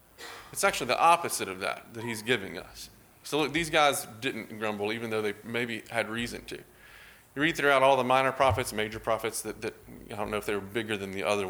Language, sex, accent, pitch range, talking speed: English, male, American, 105-160 Hz, 230 wpm